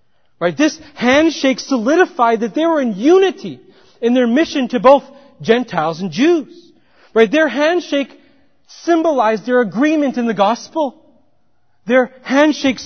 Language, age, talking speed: English, 40-59, 120 wpm